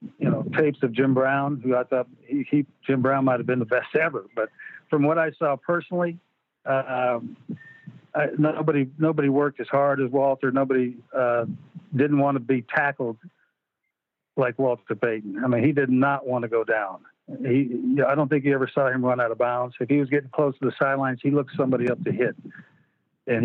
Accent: American